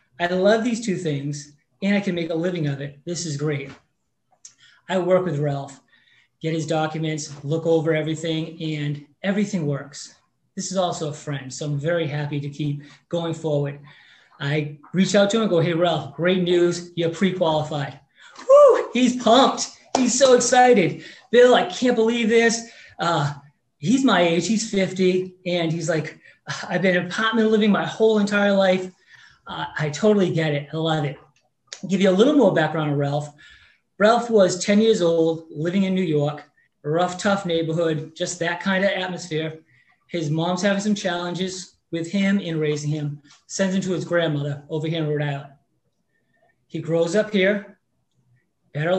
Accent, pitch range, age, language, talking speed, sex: American, 150-195 Hz, 30-49, English, 175 wpm, male